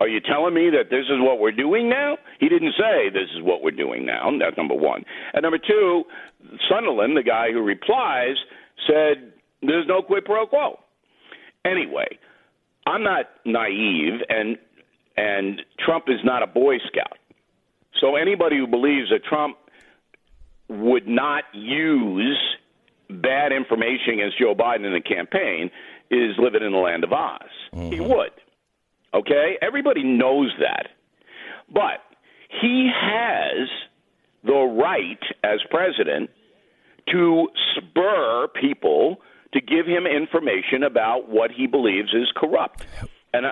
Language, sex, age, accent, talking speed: English, male, 50-69, American, 140 wpm